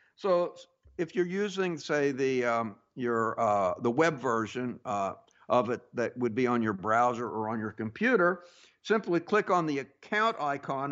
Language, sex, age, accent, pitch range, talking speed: English, male, 60-79, American, 140-195 Hz, 170 wpm